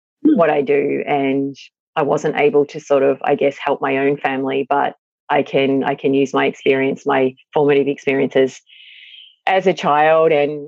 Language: English